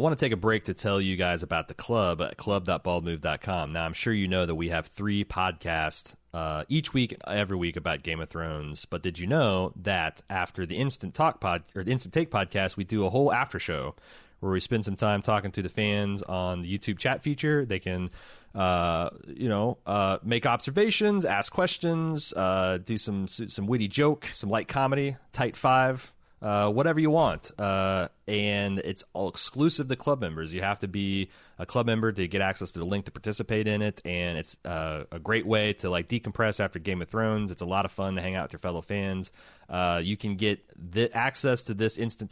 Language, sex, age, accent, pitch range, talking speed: English, male, 30-49, American, 90-115 Hz, 215 wpm